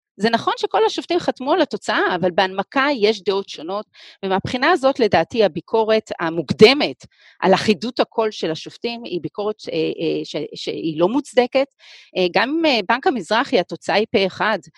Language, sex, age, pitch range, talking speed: Hebrew, female, 40-59, 180-255 Hz, 155 wpm